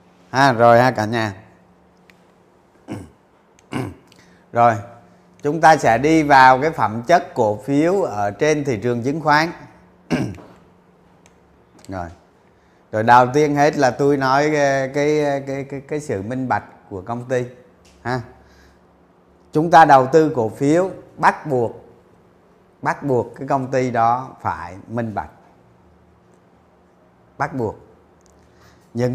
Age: 20-39